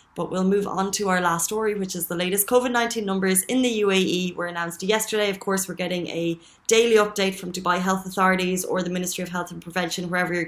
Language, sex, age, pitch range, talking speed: Arabic, female, 20-39, 180-200 Hz, 230 wpm